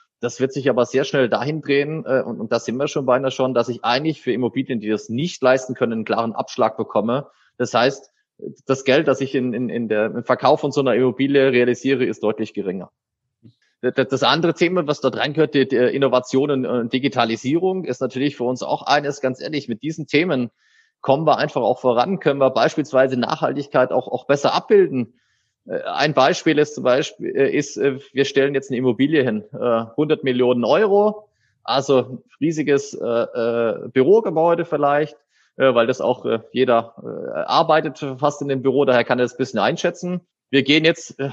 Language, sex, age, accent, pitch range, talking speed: German, male, 30-49, German, 125-150 Hz, 175 wpm